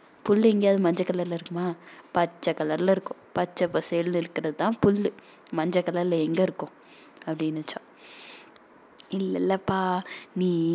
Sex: female